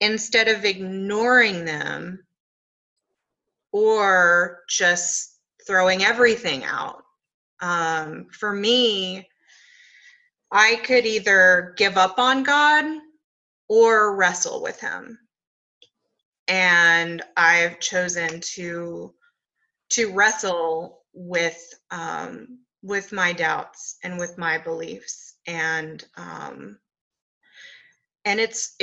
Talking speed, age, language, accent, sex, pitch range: 85 wpm, 20-39, English, American, female, 170-230 Hz